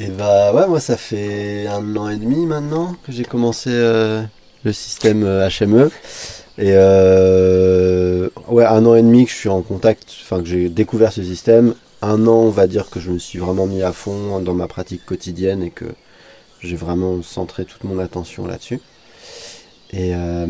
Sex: male